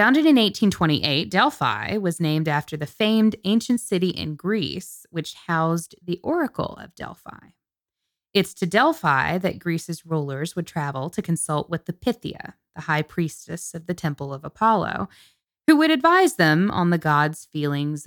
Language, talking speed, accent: English, 160 wpm, American